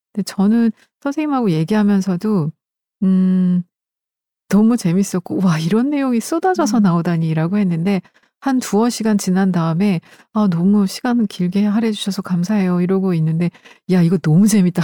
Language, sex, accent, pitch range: Korean, female, native, 170-215 Hz